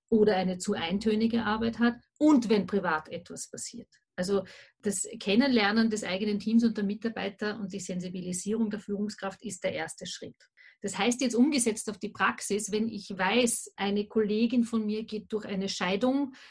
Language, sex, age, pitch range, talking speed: German, female, 40-59, 205-245 Hz, 170 wpm